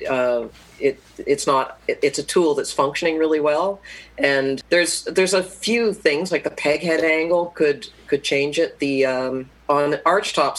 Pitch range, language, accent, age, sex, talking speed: 130-150 Hz, English, American, 40-59, female, 170 wpm